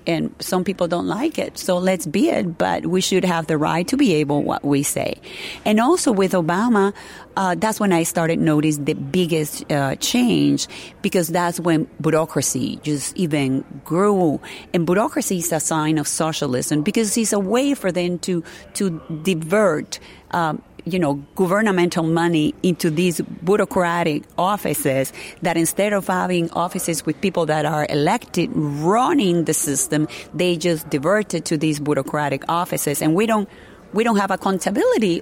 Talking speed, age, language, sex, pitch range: 160 wpm, 40-59, English, female, 155-190 Hz